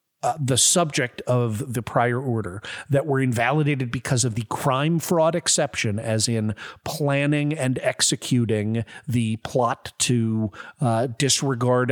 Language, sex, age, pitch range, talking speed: English, male, 40-59, 120-175 Hz, 130 wpm